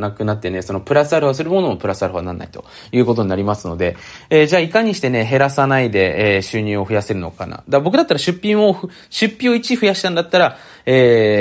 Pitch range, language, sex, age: 100-145 Hz, Japanese, male, 20-39